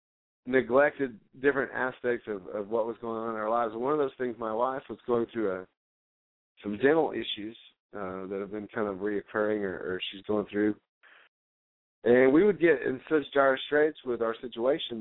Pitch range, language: 105-130 Hz, English